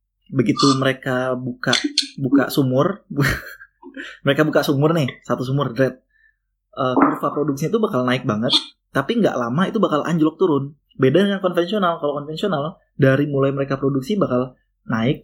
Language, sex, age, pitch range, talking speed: Indonesian, male, 20-39, 125-150 Hz, 140 wpm